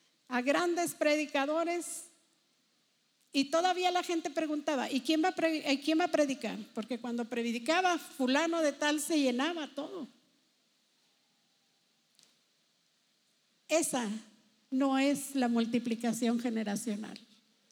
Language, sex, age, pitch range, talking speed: English, female, 50-69, 235-300 Hz, 100 wpm